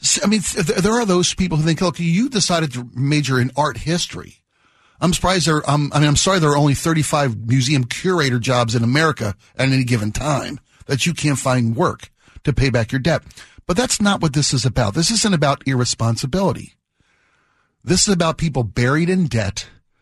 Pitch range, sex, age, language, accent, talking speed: 125-175 Hz, male, 50-69, English, American, 190 wpm